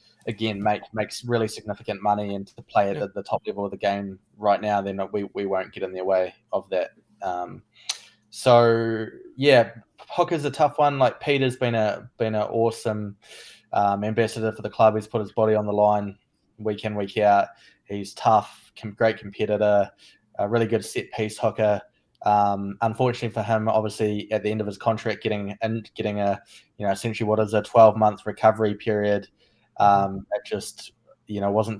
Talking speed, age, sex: 185 wpm, 20-39, male